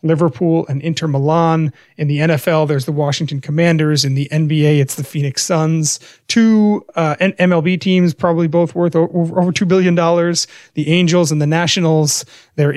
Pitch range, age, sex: 155-185 Hz, 30-49, male